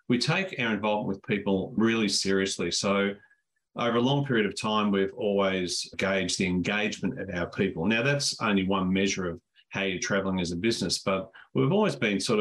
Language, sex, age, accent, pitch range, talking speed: English, male, 40-59, Australian, 95-110 Hz, 195 wpm